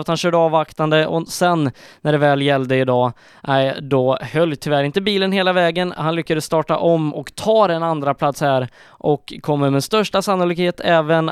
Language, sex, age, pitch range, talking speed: Swedish, male, 20-39, 135-170 Hz, 185 wpm